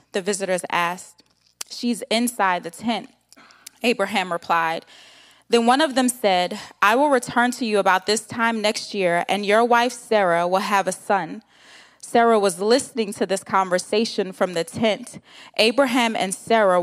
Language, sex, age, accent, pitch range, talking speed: English, female, 20-39, American, 190-240 Hz, 155 wpm